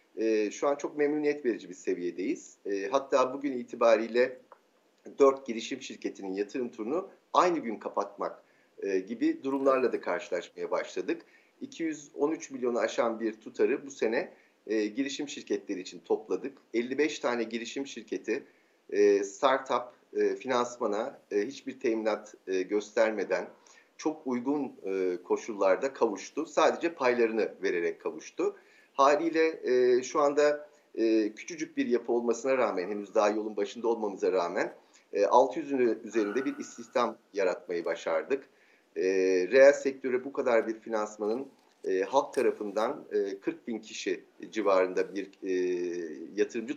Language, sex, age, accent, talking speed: Turkish, male, 50-69, native, 130 wpm